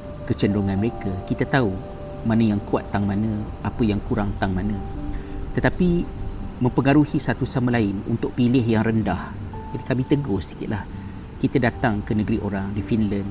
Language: Malay